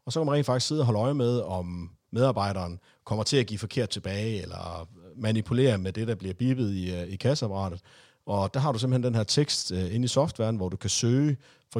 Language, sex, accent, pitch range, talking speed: Danish, male, native, 95-130 Hz, 230 wpm